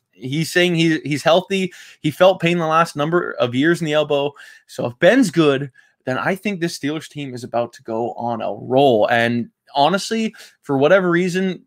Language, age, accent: English, 20-39, American